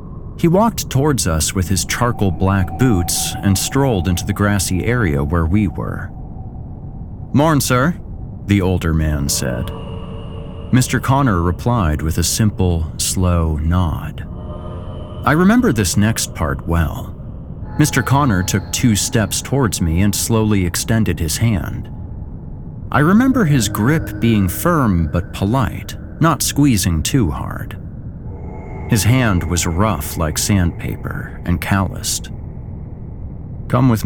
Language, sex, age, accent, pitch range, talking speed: English, male, 40-59, American, 85-115 Hz, 125 wpm